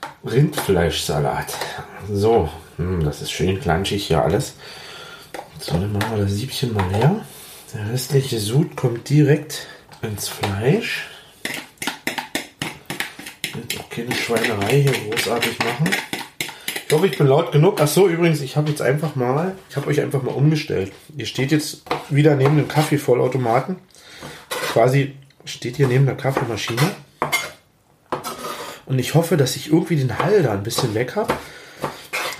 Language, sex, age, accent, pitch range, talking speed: German, male, 30-49, German, 105-150 Hz, 145 wpm